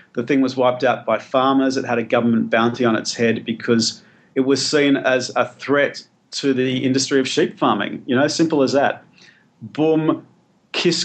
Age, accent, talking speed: 40-59, Australian, 190 wpm